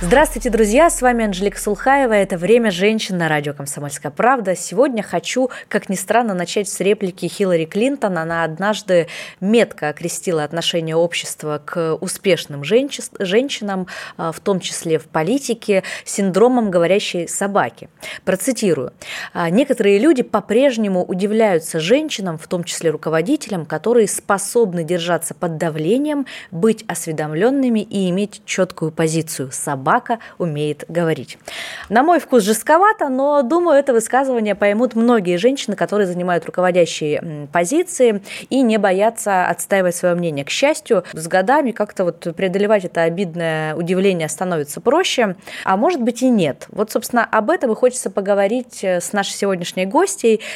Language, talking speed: Russian, 135 wpm